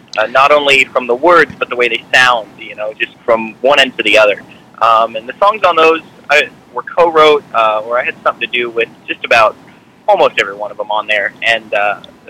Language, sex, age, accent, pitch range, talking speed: English, male, 20-39, American, 115-145 Hz, 235 wpm